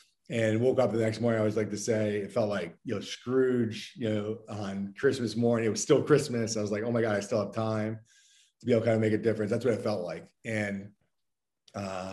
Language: English